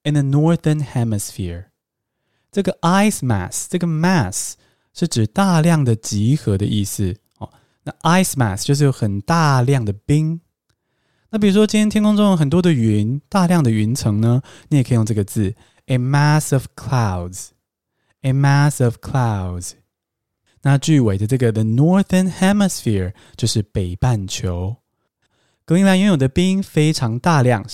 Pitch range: 110-165 Hz